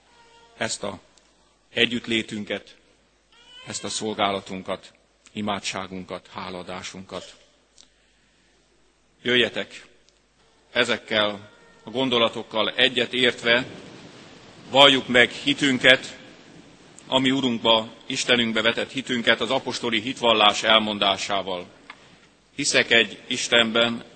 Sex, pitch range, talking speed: male, 105-120 Hz, 70 wpm